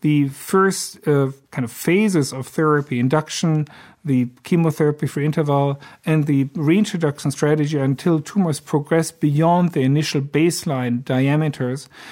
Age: 50-69